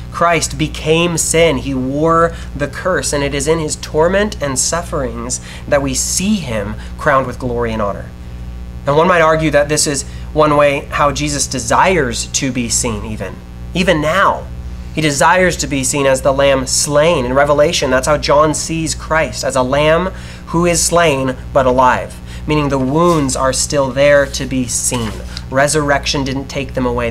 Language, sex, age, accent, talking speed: English, male, 30-49, American, 175 wpm